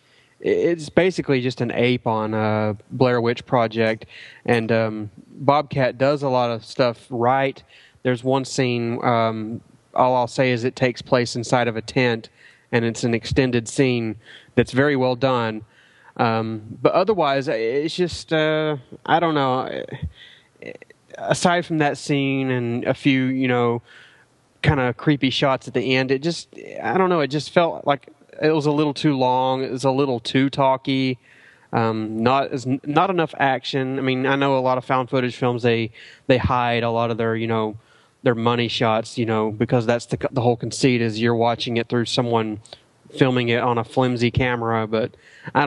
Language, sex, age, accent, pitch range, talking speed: English, male, 20-39, American, 120-145 Hz, 180 wpm